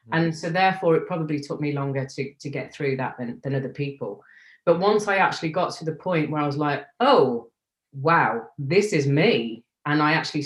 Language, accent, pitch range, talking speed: English, British, 130-155 Hz, 210 wpm